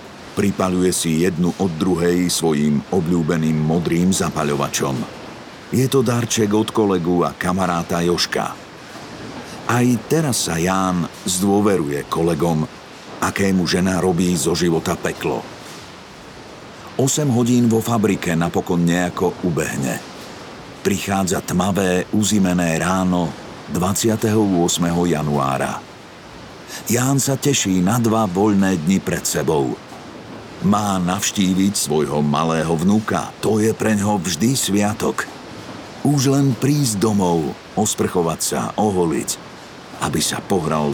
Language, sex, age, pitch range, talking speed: Slovak, male, 50-69, 85-110 Hz, 105 wpm